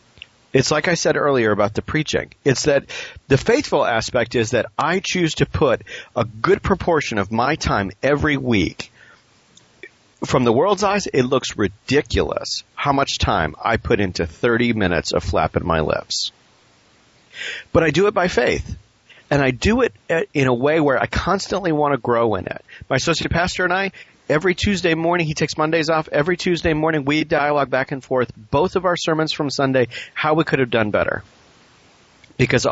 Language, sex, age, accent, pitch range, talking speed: English, male, 40-59, American, 100-155 Hz, 185 wpm